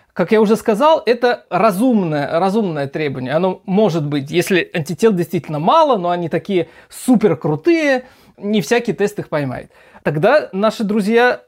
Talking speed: 145 wpm